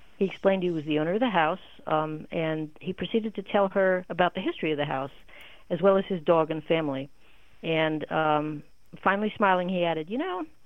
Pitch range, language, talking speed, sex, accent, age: 160-205 Hz, English, 210 wpm, female, American, 50-69